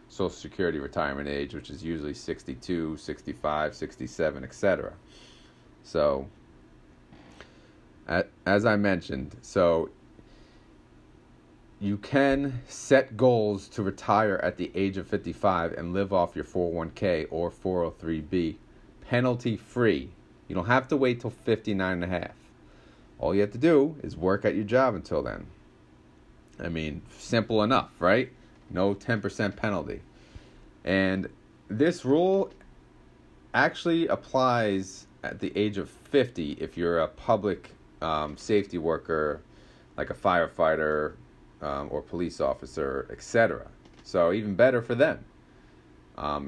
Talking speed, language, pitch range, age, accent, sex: 125 wpm, English, 80-115 Hz, 40-59, American, male